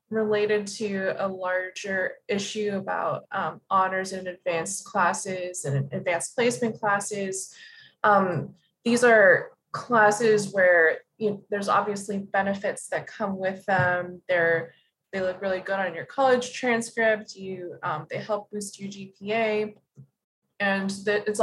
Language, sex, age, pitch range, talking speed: English, female, 20-39, 180-210 Hz, 135 wpm